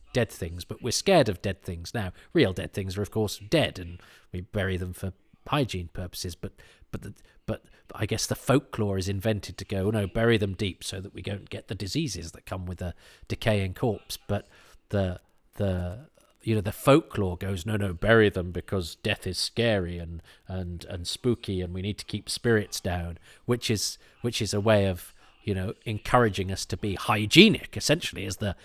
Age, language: 40-59, English